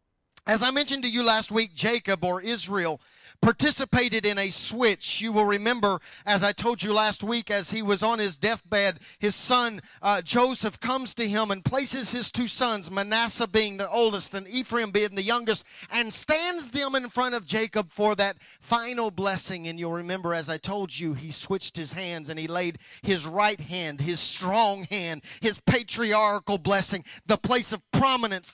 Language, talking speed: English, 185 wpm